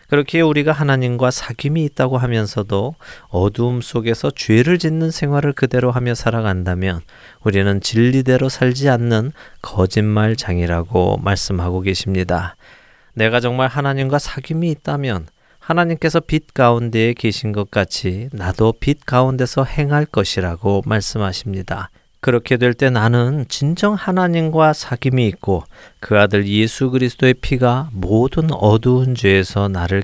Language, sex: Korean, male